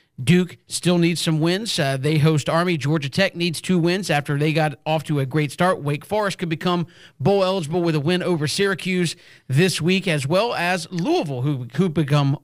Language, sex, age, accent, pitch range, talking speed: English, male, 40-59, American, 150-175 Hz, 205 wpm